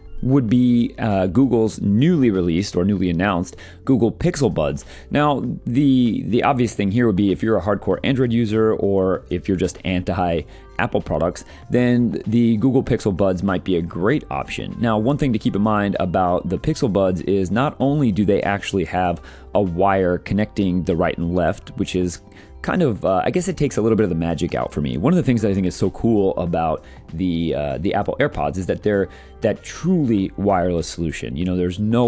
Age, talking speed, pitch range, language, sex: 30-49, 210 wpm, 85-115 Hz, English, male